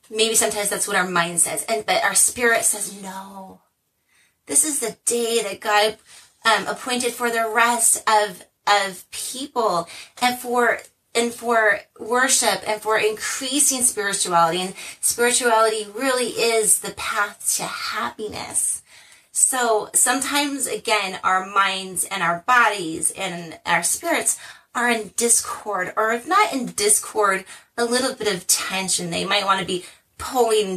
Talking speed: 145 wpm